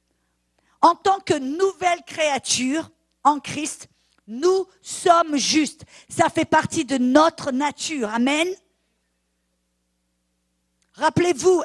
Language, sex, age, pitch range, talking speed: English, female, 50-69, 240-335 Hz, 95 wpm